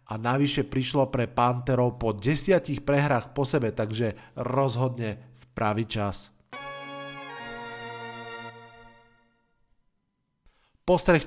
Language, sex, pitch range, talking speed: Slovak, male, 125-160 Hz, 80 wpm